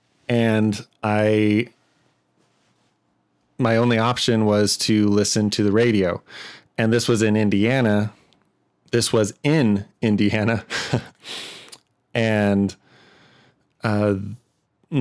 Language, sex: English, male